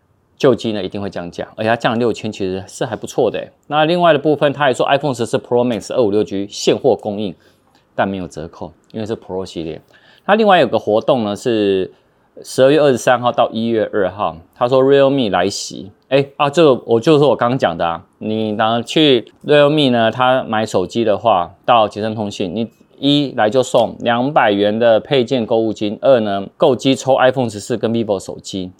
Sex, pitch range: male, 100-135 Hz